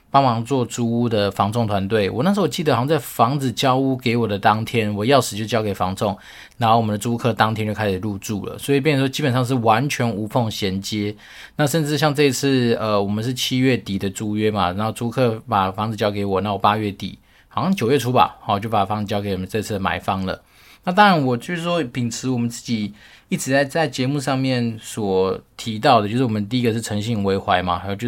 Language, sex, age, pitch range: Chinese, male, 20-39, 105-125 Hz